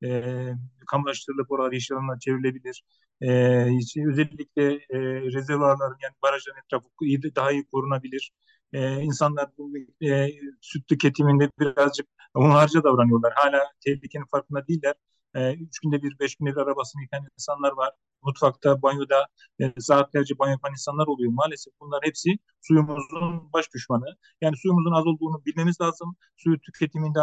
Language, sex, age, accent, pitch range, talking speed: Turkish, male, 40-59, native, 140-165 Hz, 135 wpm